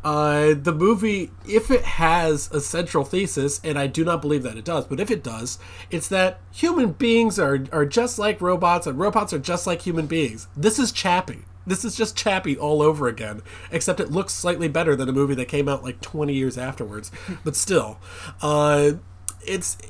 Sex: male